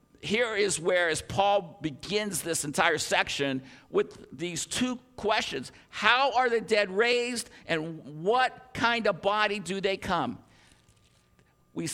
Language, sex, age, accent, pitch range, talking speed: English, male, 50-69, American, 190-290 Hz, 135 wpm